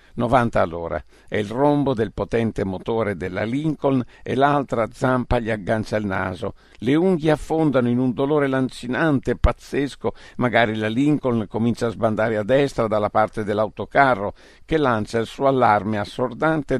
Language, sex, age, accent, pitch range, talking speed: Italian, male, 60-79, native, 105-130 Hz, 155 wpm